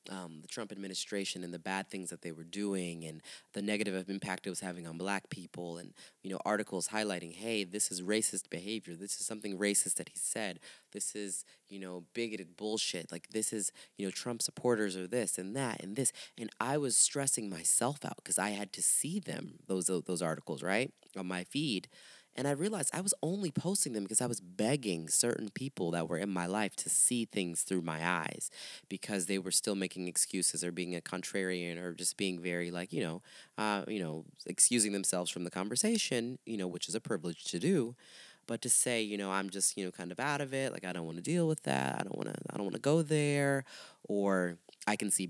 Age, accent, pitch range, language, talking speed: 20-39, American, 90-110 Hz, English, 225 wpm